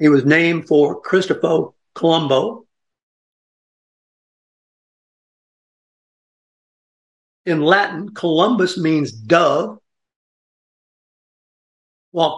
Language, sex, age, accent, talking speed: English, male, 60-79, American, 60 wpm